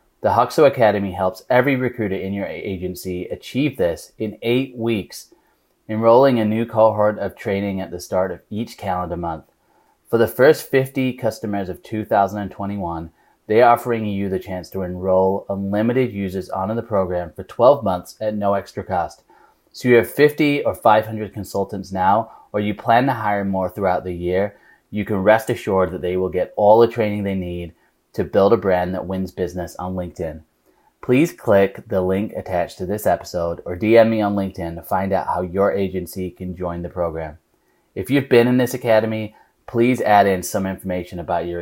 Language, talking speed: English, 185 wpm